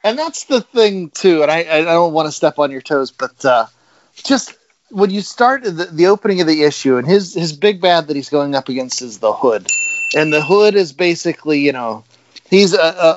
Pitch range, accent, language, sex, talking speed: 150-195 Hz, American, English, male, 225 wpm